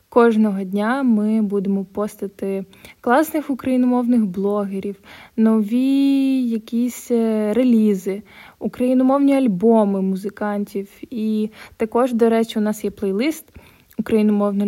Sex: female